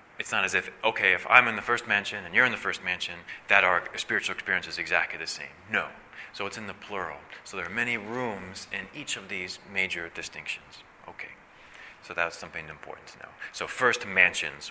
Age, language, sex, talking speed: 30-49, English, male, 210 wpm